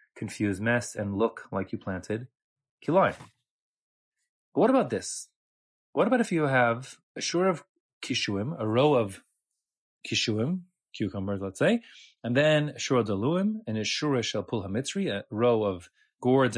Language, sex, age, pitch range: English, male, 30-49, 115-155 Hz